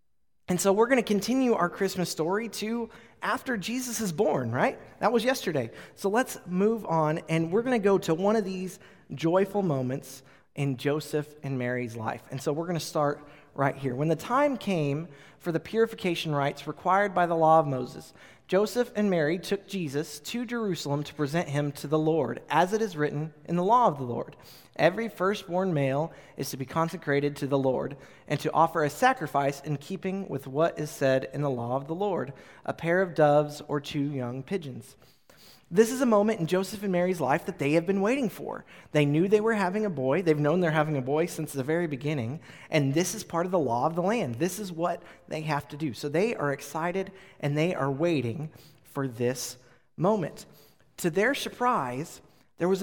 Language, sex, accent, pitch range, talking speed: English, male, American, 145-195 Hz, 210 wpm